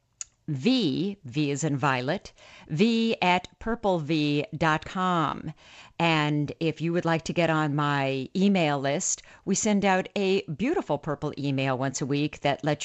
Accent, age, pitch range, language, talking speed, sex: American, 50-69, 150-175 Hz, English, 145 wpm, female